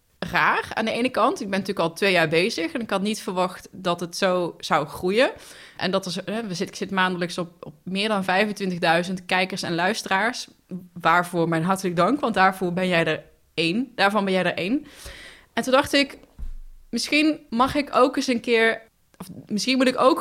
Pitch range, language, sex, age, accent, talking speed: 175-235 Hz, Dutch, female, 20-39, Dutch, 200 wpm